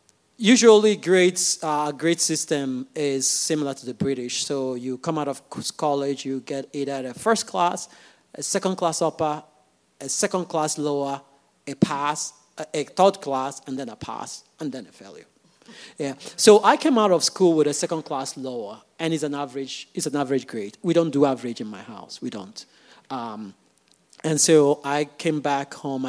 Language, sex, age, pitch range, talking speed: English, male, 40-59, 135-165 Hz, 175 wpm